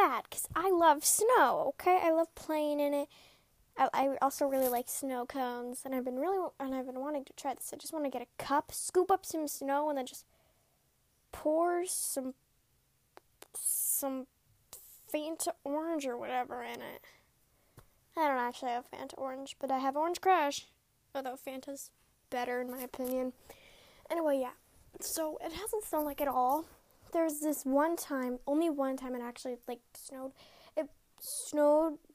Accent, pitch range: American, 265-330 Hz